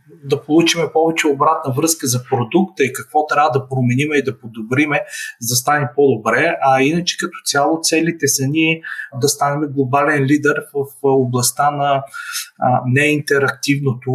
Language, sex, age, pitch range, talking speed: Bulgarian, male, 30-49, 125-155 Hz, 145 wpm